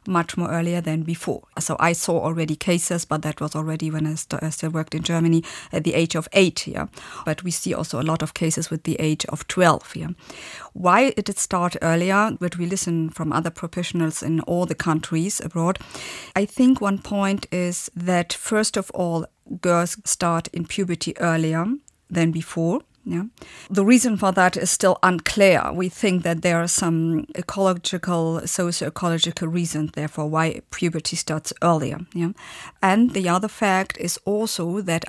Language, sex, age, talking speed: English, female, 50-69, 180 wpm